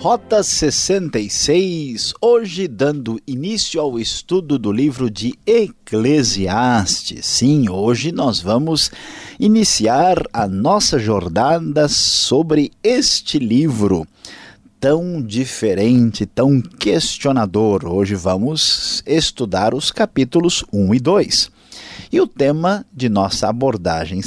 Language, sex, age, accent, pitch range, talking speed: Portuguese, male, 50-69, Brazilian, 100-165 Hz, 100 wpm